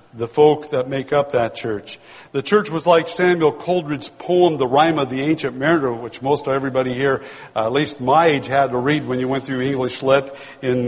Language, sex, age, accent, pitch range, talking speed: English, male, 60-79, American, 140-190 Hz, 215 wpm